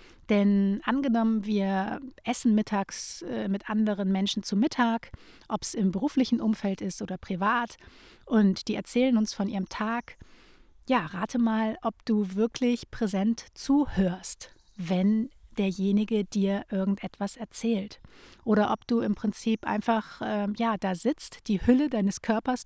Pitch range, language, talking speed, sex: 195-235 Hz, German, 140 wpm, female